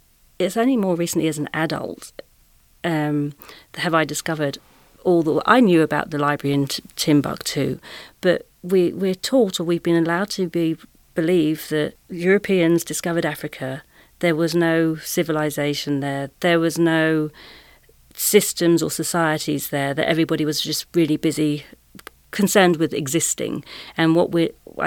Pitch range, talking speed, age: 150-180 Hz, 140 wpm, 40-59